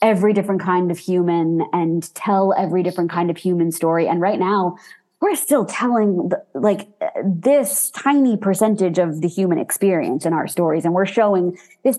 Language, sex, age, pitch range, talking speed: English, female, 20-39, 170-205 Hz, 175 wpm